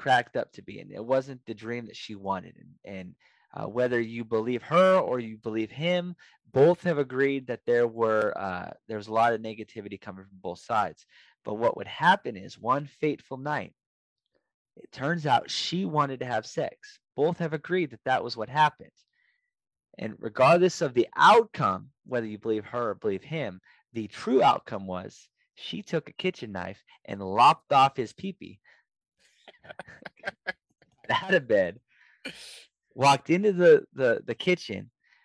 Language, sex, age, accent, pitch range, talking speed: English, male, 20-39, American, 120-165 Hz, 165 wpm